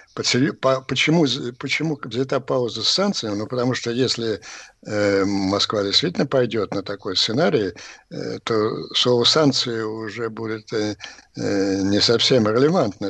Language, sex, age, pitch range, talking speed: Russian, male, 60-79, 105-135 Hz, 125 wpm